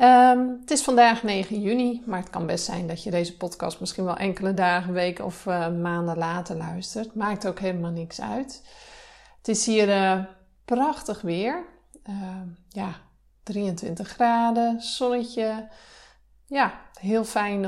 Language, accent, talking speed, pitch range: Dutch, Dutch, 145 wpm, 180-220 Hz